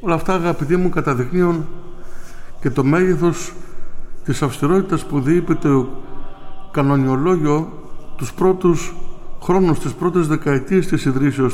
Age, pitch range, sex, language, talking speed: 60-79, 120-170 Hz, male, Greek, 115 wpm